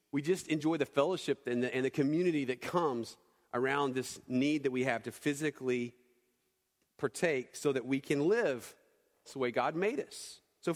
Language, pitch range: English, 130-150 Hz